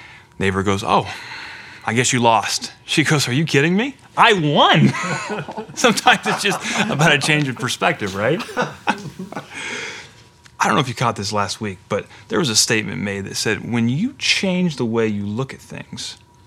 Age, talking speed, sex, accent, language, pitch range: 30-49, 180 wpm, male, American, English, 105-140 Hz